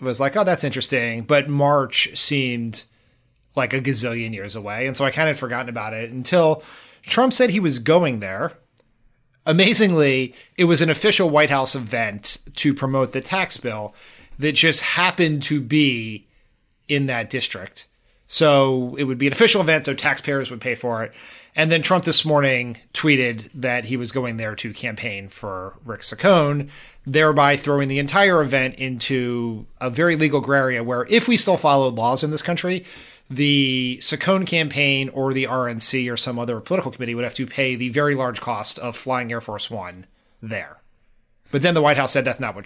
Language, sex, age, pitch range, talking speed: English, male, 30-49, 120-150 Hz, 185 wpm